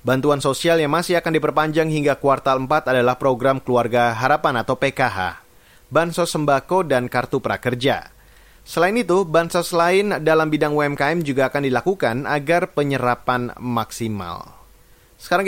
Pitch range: 130-160 Hz